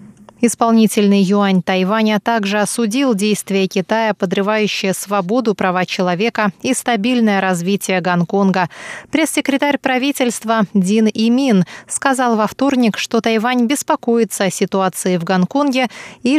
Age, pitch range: 20-39, 195-240 Hz